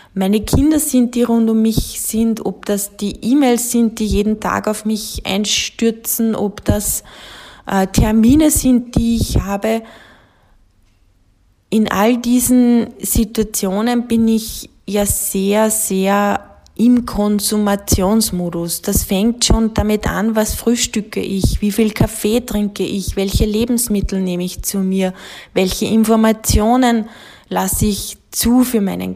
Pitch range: 185-225 Hz